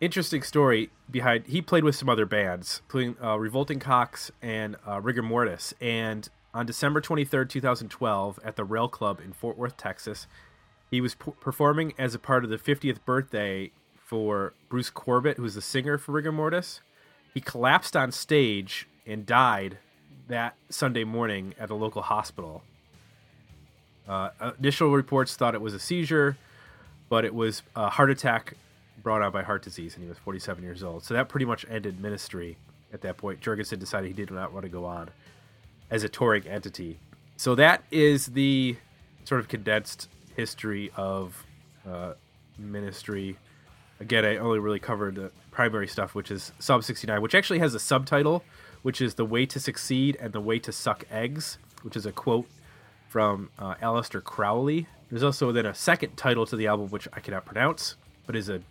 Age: 30-49